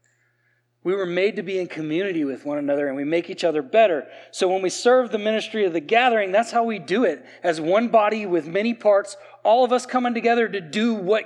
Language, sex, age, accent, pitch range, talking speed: English, male, 30-49, American, 160-220 Hz, 235 wpm